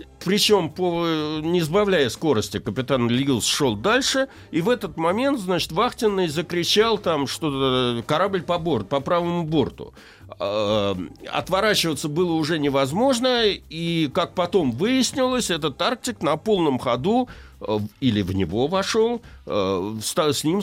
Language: Russian